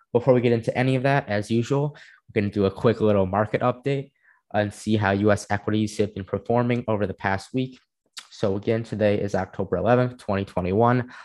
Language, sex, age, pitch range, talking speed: English, male, 20-39, 100-115 Hz, 195 wpm